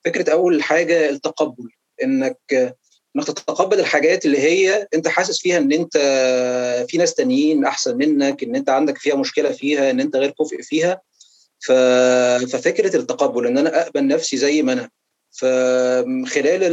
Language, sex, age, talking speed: Arabic, male, 30-49, 145 wpm